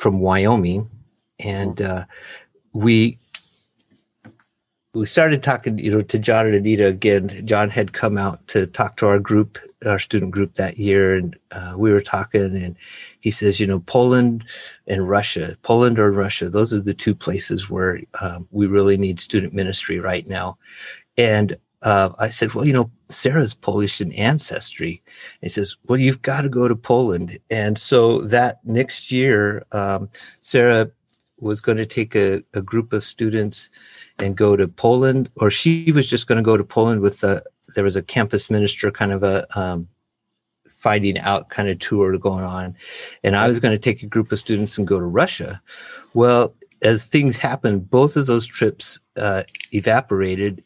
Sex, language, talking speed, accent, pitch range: male, English, 180 wpm, American, 100-115 Hz